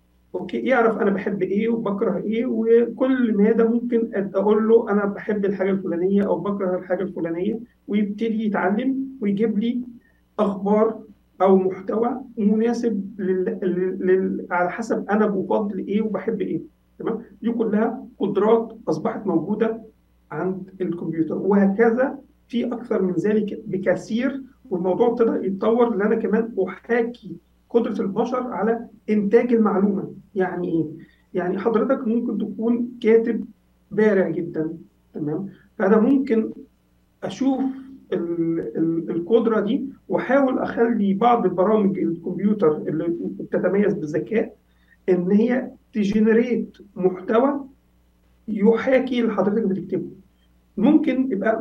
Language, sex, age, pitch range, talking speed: Arabic, male, 50-69, 185-230 Hz, 110 wpm